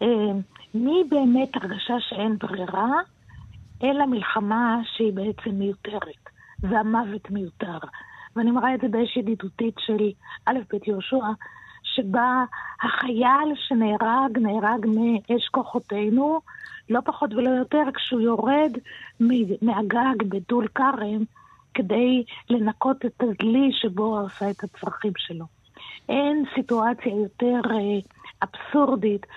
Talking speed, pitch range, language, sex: 105 wpm, 215-260 Hz, Hebrew, female